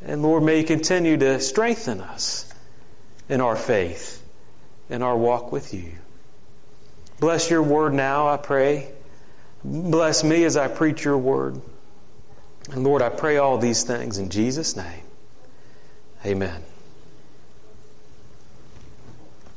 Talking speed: 125 wpm